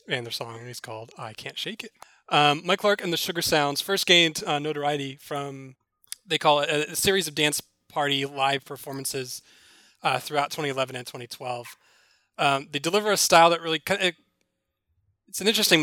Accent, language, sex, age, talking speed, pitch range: American, English, male, 20-39, 180 wpm, 135-160 Hz